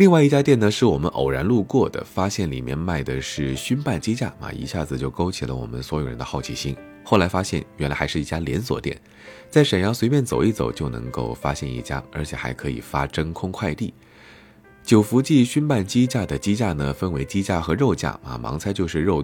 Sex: male